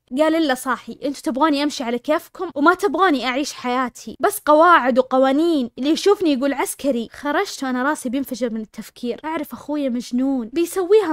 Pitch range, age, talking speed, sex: 255-330 Hz, 20-39, 155 wpm, female